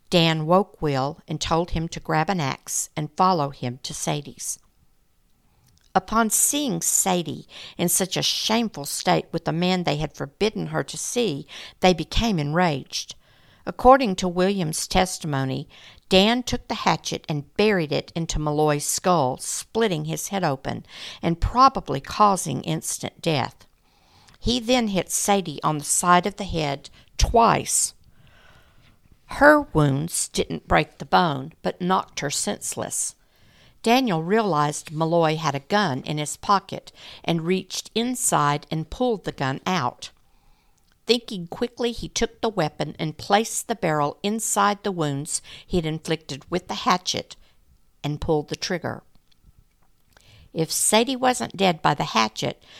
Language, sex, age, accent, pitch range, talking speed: English, female, 60-79, American, 155-205 Hz, 140 wpm